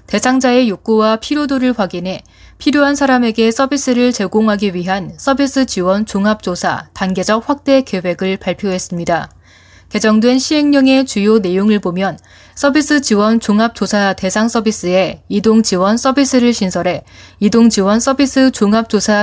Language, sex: Korean, female